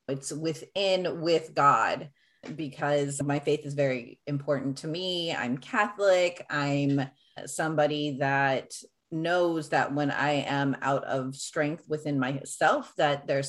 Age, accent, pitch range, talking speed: 30-49, American, 135-155 Hz, 130 wpm